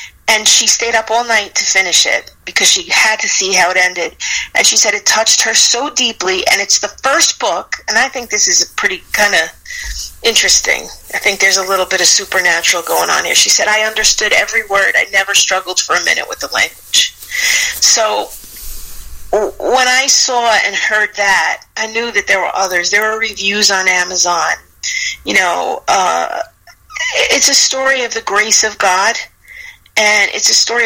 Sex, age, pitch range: female, 40-59, 195-265 Hz